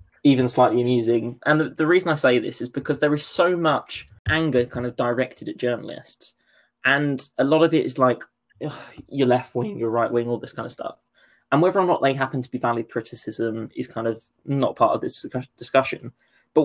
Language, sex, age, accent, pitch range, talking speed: English, male, 20-39, British, 120-160 Hz, 215 wpm